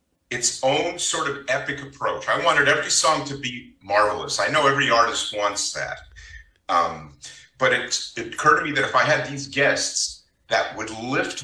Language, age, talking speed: English, 50-69, 185 wpm